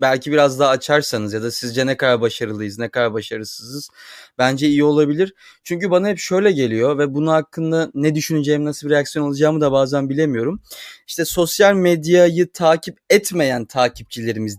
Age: 30-49